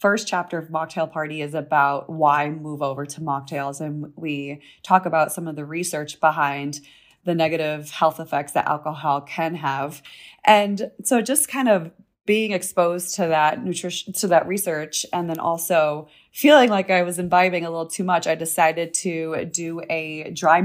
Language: English